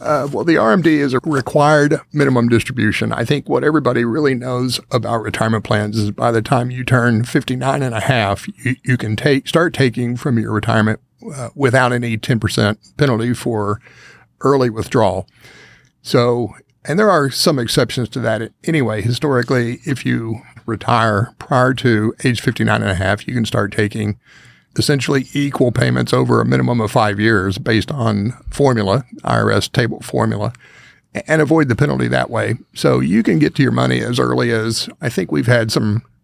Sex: male